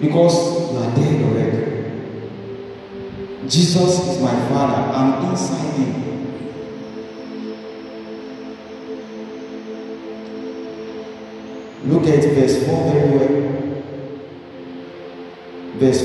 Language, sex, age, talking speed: English, male, 40-59, 65 wpm